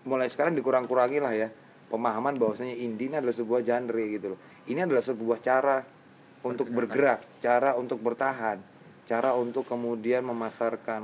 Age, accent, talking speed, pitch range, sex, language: 30-49, native, 145 wpm, 100-120 Hz, male, Indonesian